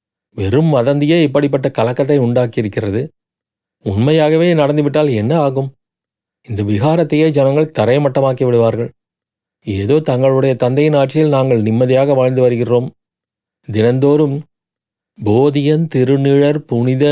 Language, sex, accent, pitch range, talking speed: Tamil, male, native, 120-145 Hz, 90 wpm